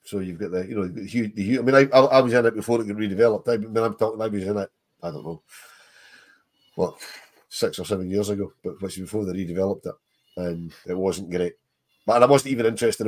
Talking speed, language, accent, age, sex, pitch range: 250 wpm, English, British, 40-59, male, 100-120 Hz